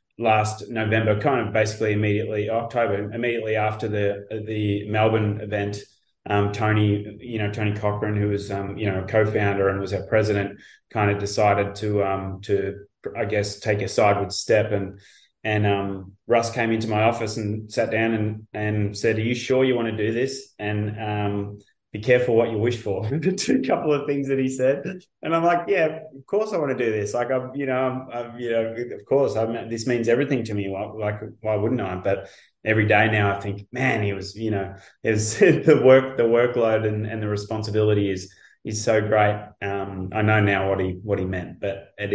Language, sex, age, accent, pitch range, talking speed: English, male, 20-39, Australian, 100-115 Hz, 205 wpm